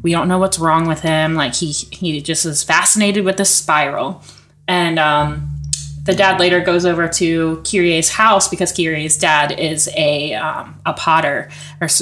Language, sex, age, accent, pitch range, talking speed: English, female, 20-39, American, 150-185 Hz, 175 wpm